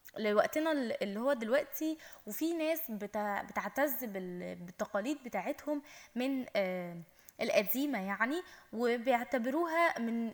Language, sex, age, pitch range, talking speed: Arabic, female, 10-29, 205-290 Hz, 85 wpm